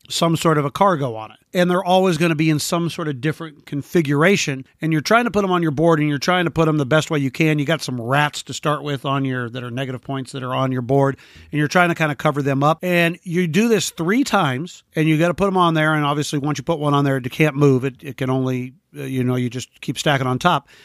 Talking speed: 295 wpm